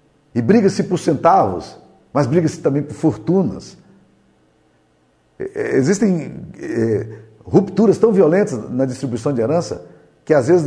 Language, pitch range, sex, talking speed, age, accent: Portuguese, 135-180 Hz, male, 110 wpm, 50-69, Brazilian